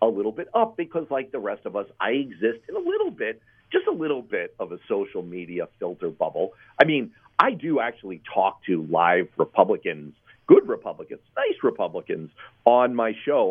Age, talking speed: 50-69, 185 wpm